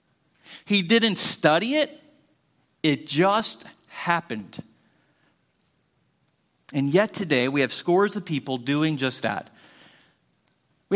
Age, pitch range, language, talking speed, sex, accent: 40-59, 130-175 Hz, English, 105 wpm, male, American